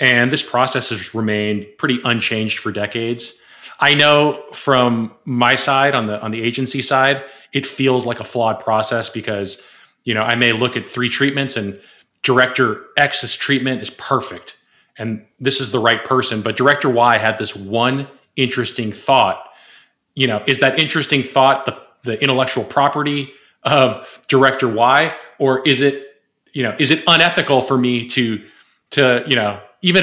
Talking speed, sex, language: 165 wpm, male, English